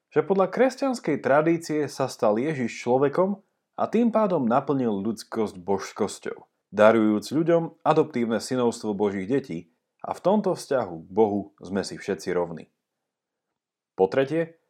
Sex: male